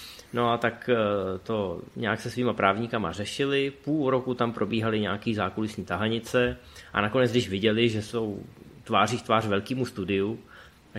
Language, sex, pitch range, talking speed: Czech, male, 100-125 Hz, 155 wpm